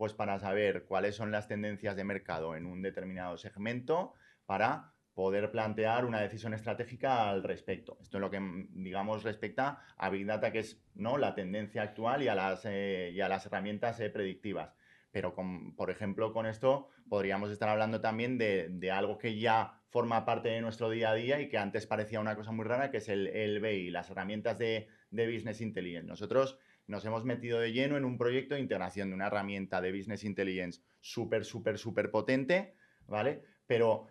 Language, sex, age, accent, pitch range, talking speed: Spanish, male, 20-39, Spanish, 100-125 Hz, 185 wpm